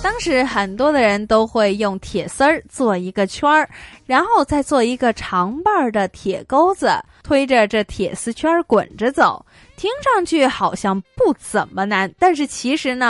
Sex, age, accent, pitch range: female, 20-39, native, 200-295 Hz